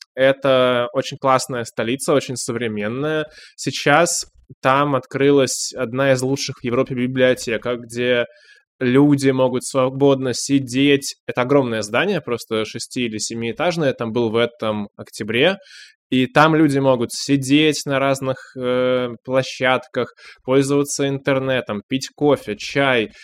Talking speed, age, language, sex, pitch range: 120 wpm, 20-39, Russian, male, 120-140 Hz